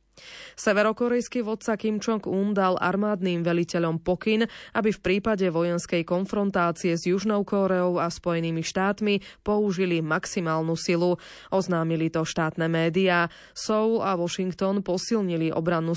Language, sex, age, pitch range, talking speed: Slovak, female, 20-39, 170-200 Hz, 115 wpm